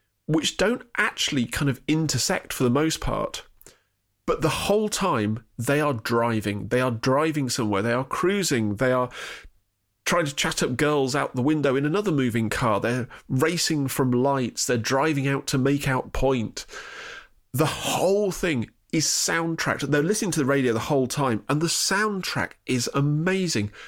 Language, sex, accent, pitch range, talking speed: English, male, British, 120-155 Hz, 170 wpm